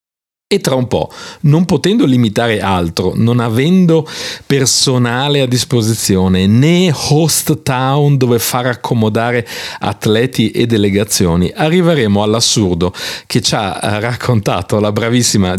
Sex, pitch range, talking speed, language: male, 90-120 Hz, 115 wpm, Italian